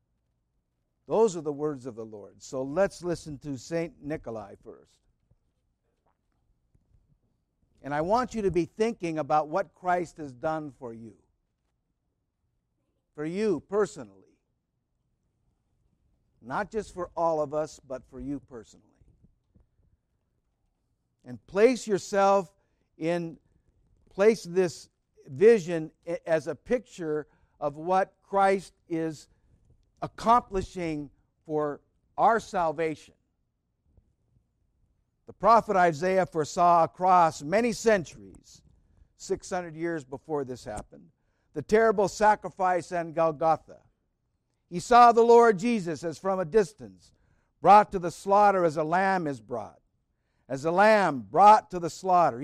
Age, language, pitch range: 60-79, English, 140-195 Hz